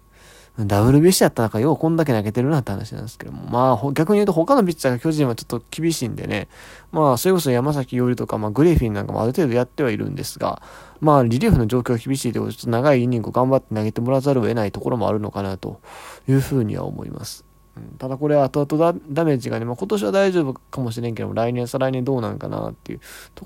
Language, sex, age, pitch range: Japanese, male, 20-39, 110-145 Hz